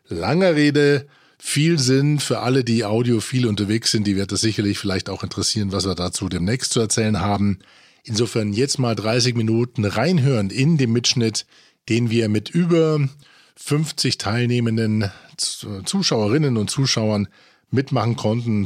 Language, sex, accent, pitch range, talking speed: German, male, German, 105-135 Hz, 140 wpm